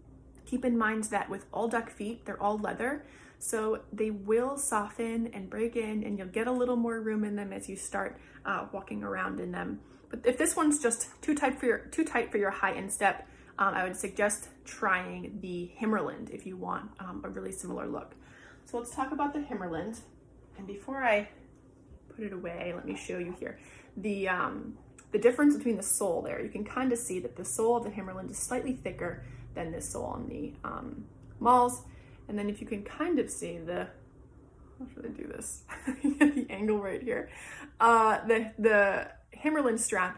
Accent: American